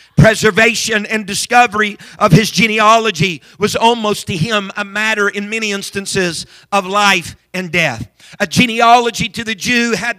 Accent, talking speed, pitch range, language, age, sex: American, 145 wpm, 180-220 Hz, English, 50-69, male